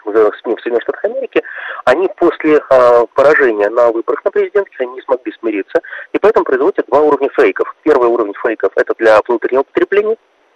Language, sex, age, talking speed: Russian, male, 30-49, 165 wpm